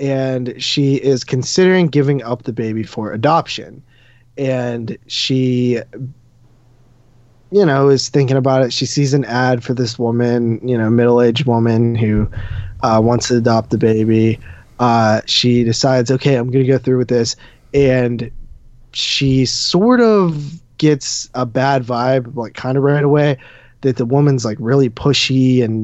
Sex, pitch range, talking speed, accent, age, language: male, 120-140 Hz, 155 wpm, American, 20-39, English